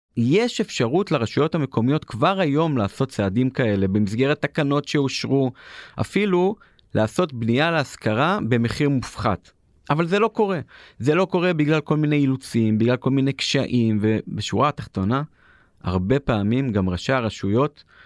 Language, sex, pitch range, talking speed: Hebrew, male, 105-150 Hz, 135 wpm